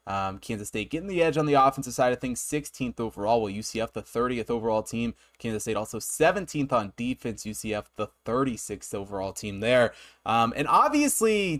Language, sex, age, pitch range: English, male, 20-39, 115-150 Hz